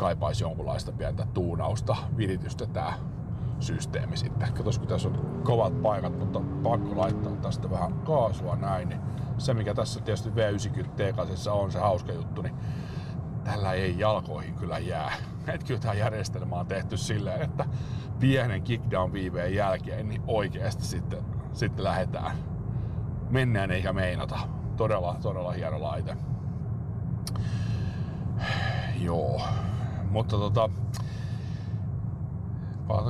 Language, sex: Finnish, male